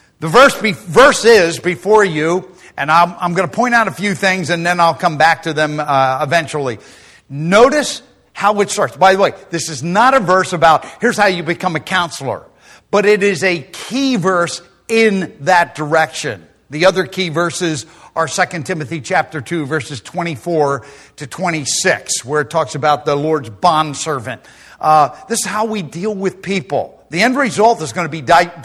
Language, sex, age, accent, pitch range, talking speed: English, male, 50-69, American, 165-215 Hz, 195 wpm